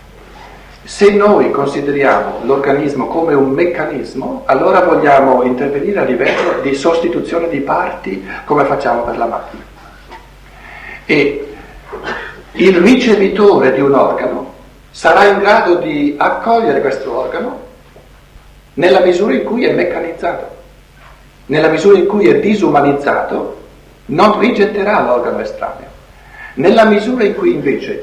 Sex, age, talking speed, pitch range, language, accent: male, 60-79, 120 wpm, 135-220 Hz, Italian, native